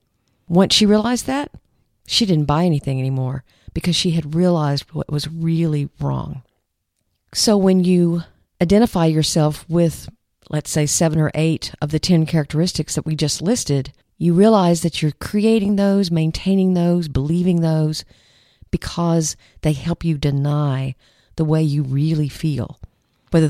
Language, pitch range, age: English, 145-170 Hz, 50-69